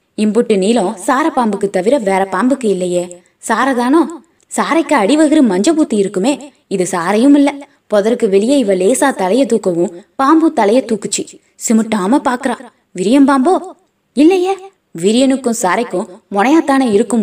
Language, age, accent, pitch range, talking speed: Tamil, 20-39, native, 200-290 Hz, 45 wpm